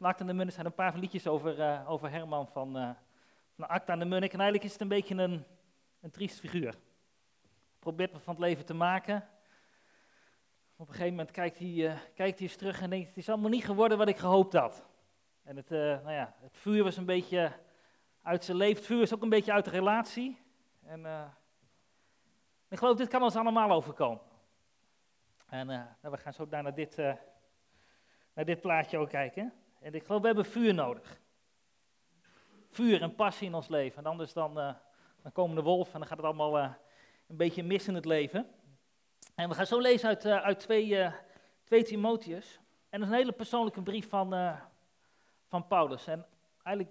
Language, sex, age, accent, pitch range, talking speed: Dutch, male, 40-59, Dutch, 155-200 Hz, 205 wpm